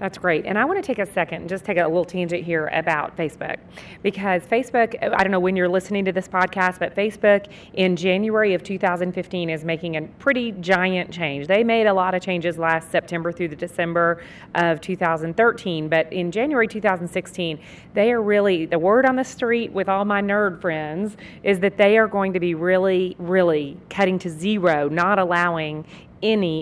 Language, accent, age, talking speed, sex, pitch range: English, American, 40-59, 195 wpm, female, 175-205 Hz